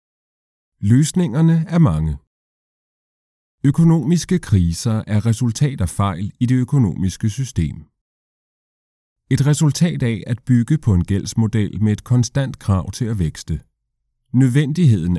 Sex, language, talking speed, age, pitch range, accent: male, Danish, 115 wpm, 30-49, 95-125 Hz, native